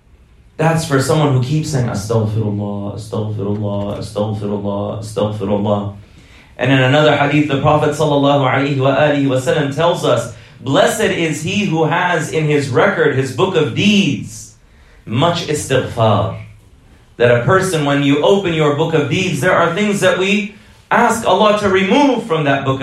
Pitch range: 125-170 Hz